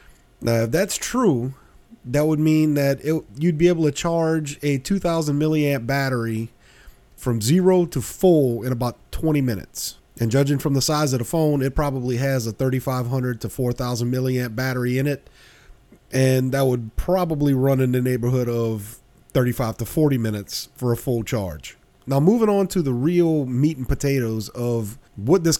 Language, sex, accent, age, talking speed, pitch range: English, male, American, 30-49, 175 wpm, 125-155 Hz